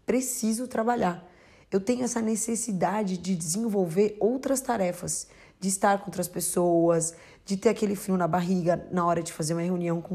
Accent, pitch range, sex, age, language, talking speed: Brazilian, 170-215 Hz, female, 20-39, Portuguese, 165 wpm